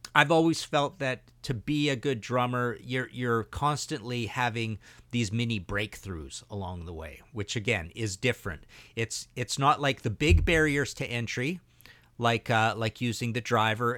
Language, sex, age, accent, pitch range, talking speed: English, male, 50-69, American, 100-125 Hz, 165 wpm